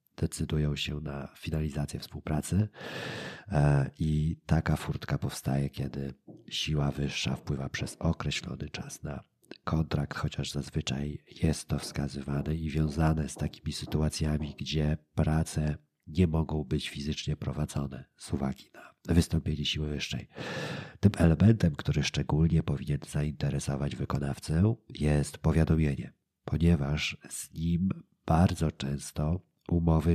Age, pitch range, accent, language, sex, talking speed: 40-59, 70-85 Hz, native, Polish, male, 110 wpm